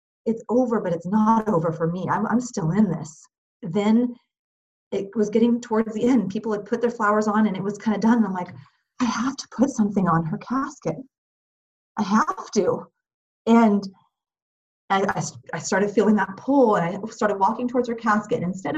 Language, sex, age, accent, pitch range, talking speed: English, female, 30-49, American, 210-255 Hz, 190 wpm